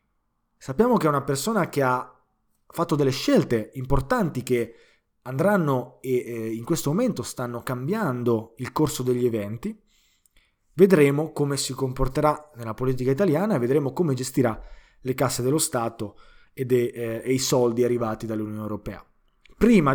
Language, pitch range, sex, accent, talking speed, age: Italian, 115-145 Hz, male, native, 145 wpm, 20-39